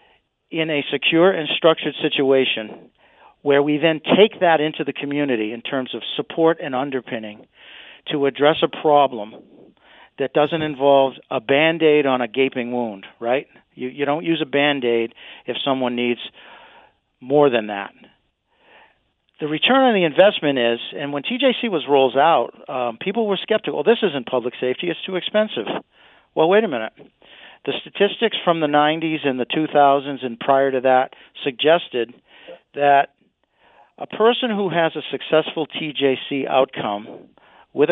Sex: male